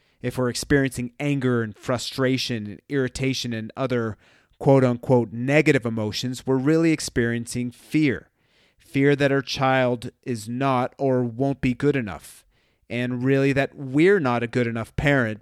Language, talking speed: English, 145 wpm